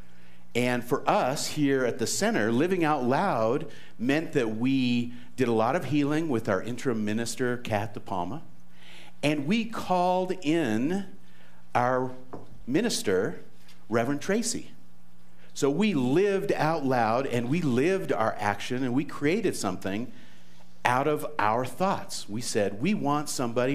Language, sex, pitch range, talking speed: English, male, 95-135 Hz, 140 wpm